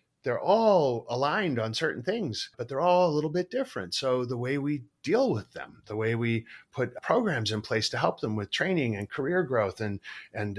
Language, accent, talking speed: English, American, 210 wpm